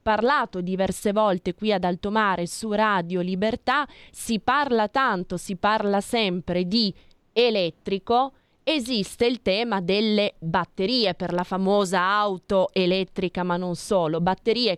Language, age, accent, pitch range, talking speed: Italian, 20-39, native, 180-215 Hz, 125 wpm